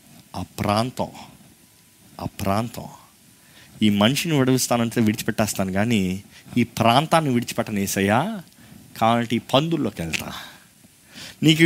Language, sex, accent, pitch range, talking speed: Telugu, male, native, 115-185 Hz, 95 wpm